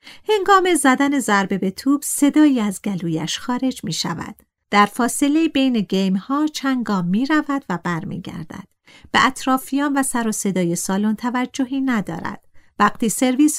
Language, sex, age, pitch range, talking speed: Persian, female, 50-69, 195-270 Hz, 140 wpm